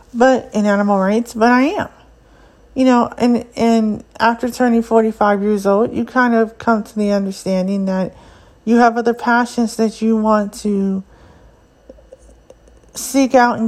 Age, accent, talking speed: 50-69, American, 155 wpm